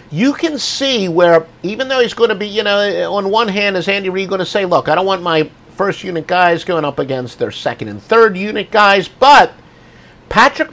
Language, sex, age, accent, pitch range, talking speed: English, male, 50-69, American, 125-200 Hz, 225 wpm